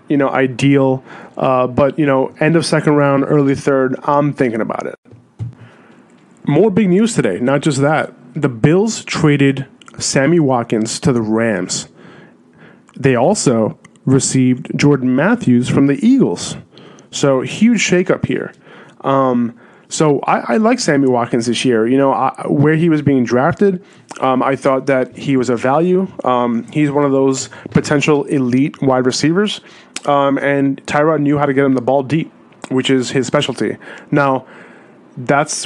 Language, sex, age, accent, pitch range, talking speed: English, male, 30-49, American, 130-155 Hz, 160 wpm